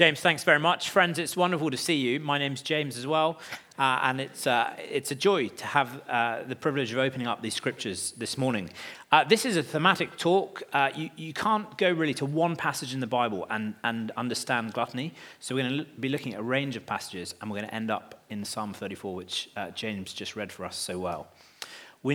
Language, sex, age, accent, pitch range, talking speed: English, male, 30-49, British, 115-155 Hz, 235 wpm